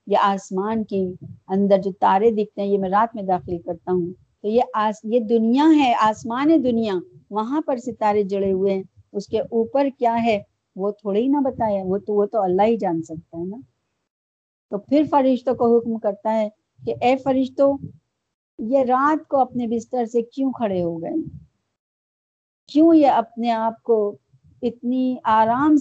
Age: 50-69